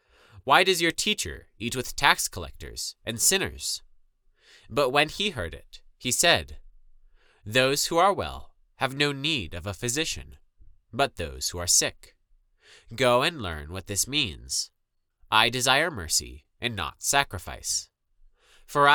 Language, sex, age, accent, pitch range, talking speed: English, male, 20-39, American, 85-140 Hz, 145 wpm